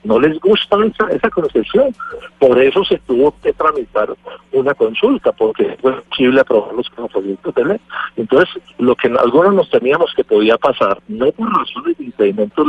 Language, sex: Spanish, male